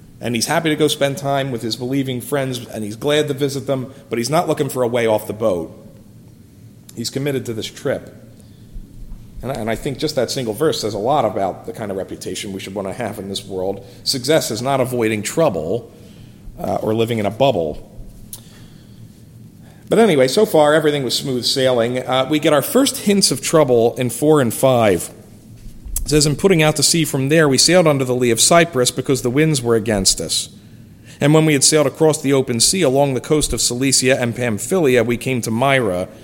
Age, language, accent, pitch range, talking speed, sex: 40-59, English, American, 110-145 Hz, 215 wpm, male